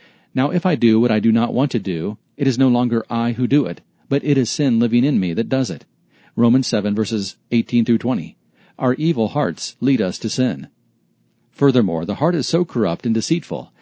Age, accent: 40-59, American